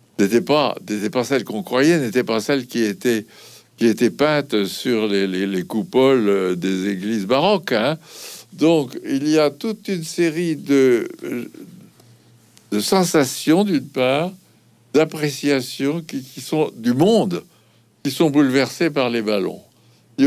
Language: French